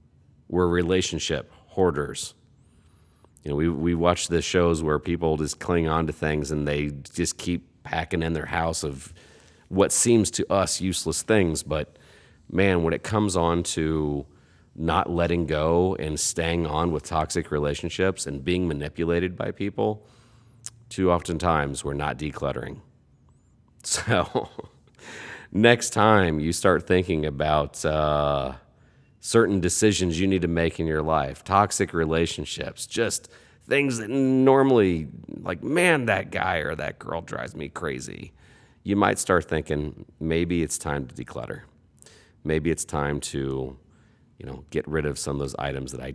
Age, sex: 40-59, male